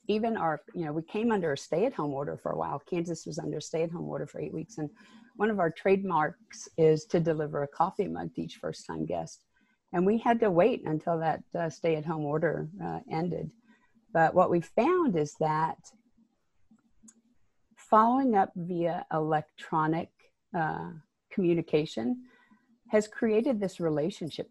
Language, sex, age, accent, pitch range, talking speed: English, female, 40-59, American, 155-210 Hz, 155 wpm